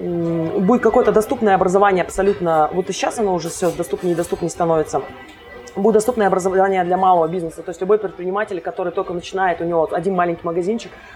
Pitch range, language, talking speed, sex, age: 175-205 Hz, Russian, 175 wpm, female, 20-39